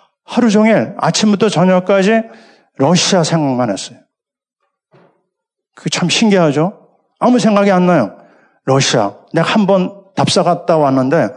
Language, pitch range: Korean, 160-210 Hz